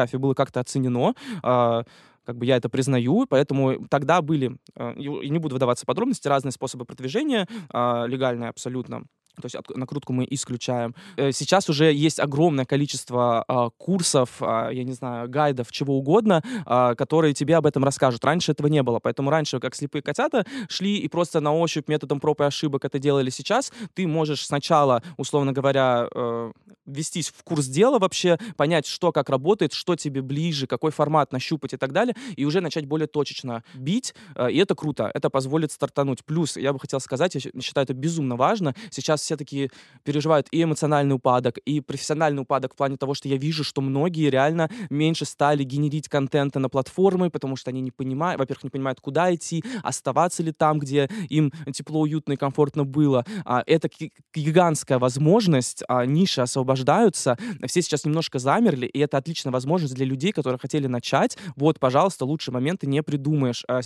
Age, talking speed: 20-39, 165 wpm